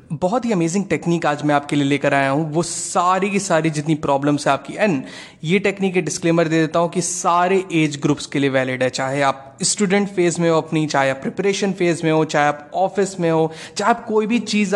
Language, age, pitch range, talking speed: Hindi, 20-39, 145-195 Hz, 230 wpm